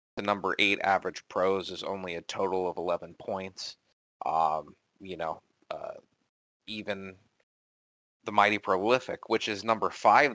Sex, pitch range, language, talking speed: male, 95-110 Hz, English, 140 wpm